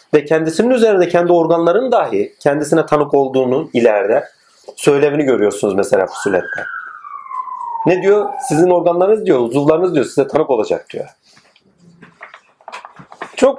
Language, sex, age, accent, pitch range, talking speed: Turkish, male, 40-59, native, 160-240 Hz, 115 wpm